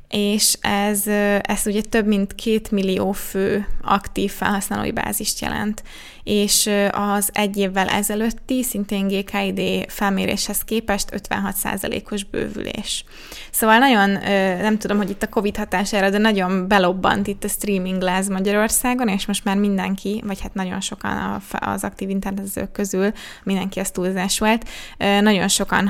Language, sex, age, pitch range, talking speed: Hungarian, female, 20-39, 190-210 Hz, 135 wpm